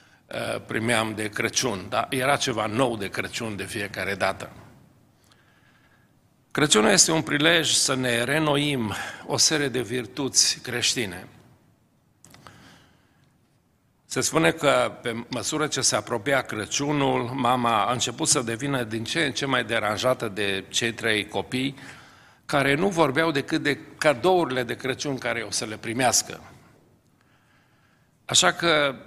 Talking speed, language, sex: 130 wpm, Romanian, male